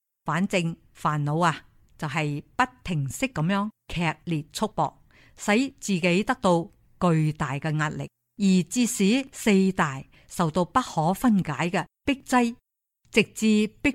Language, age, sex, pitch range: Chinese, 50-69, female, 155-220 Hz